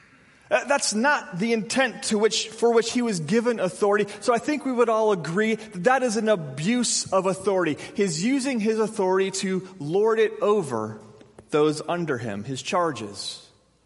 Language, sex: English, male